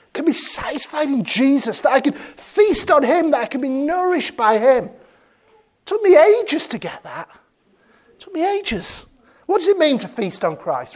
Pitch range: 210-310 Hz